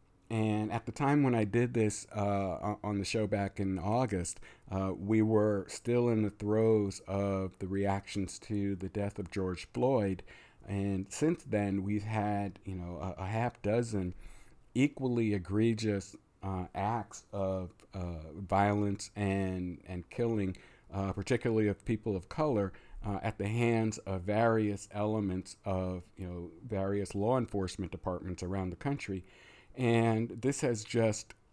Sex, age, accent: male, 50-69, American